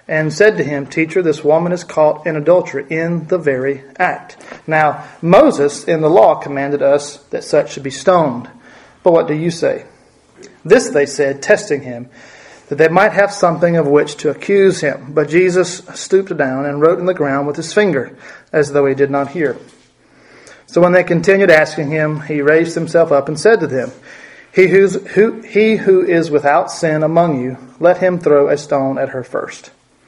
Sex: male